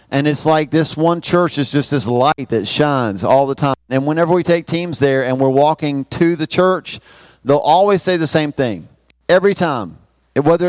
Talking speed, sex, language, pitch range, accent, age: 200 wpm, male, English, 130-165 Hz, American, 40-59